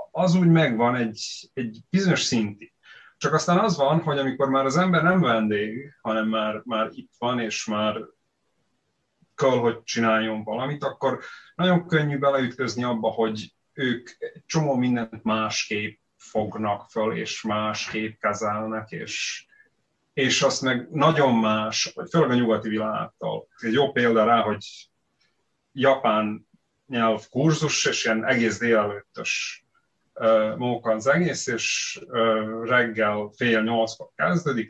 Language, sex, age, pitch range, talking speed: Hungarian, male, 30-49, 110-140 Hz, 130 wpm